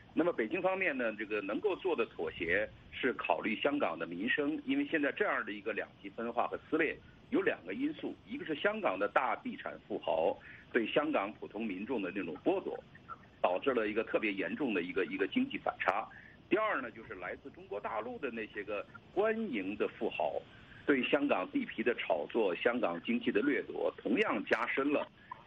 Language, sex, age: English, male, 50-69